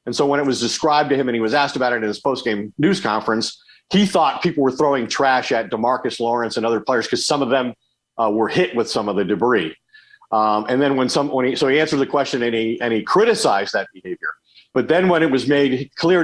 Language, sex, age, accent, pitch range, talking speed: English, male, 40-59, American, 125-165 Hz, 250 wpm